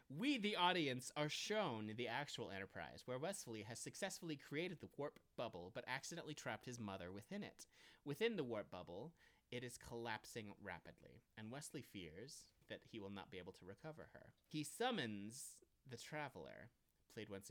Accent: American